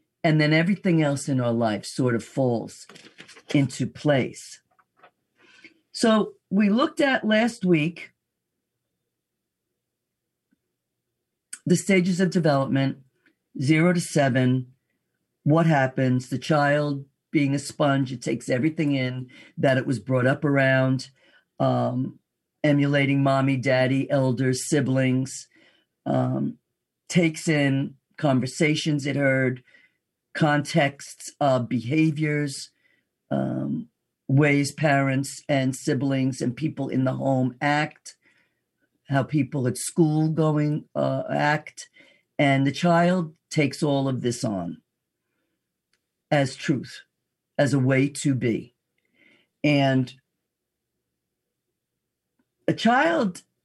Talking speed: 105 wpm